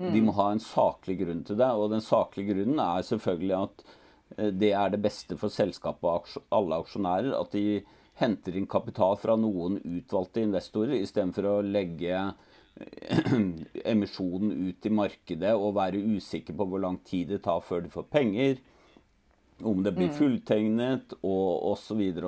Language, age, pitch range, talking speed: English, 40-59, 95-110 Hz, 170 wpm